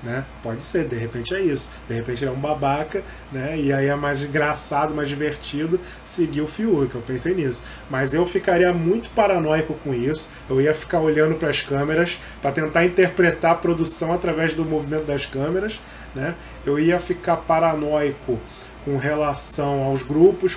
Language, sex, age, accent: Portuguese, male, 20-39, Brazilian